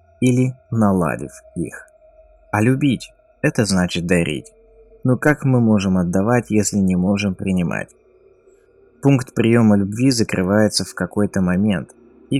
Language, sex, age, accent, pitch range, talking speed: Russian, male, 20-39, native, 95-115 Hz, 120 wpm